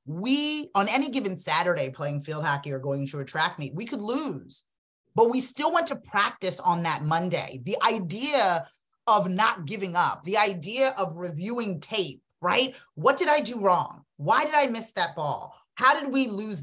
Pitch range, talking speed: 180-275 Hz, 190 wpm